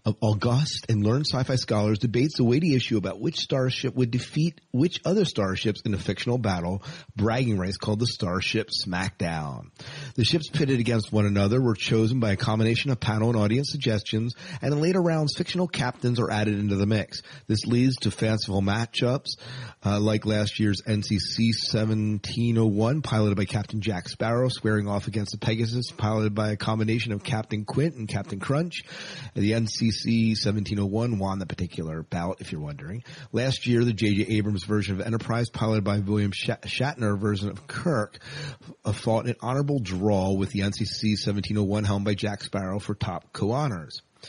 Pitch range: 105-125 Hz